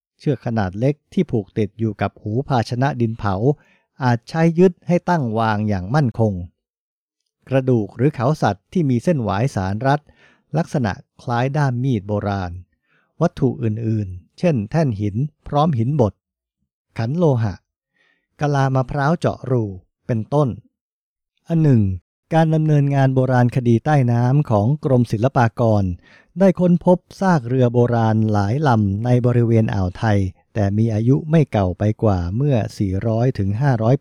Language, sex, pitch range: English, male, 110-145 Hz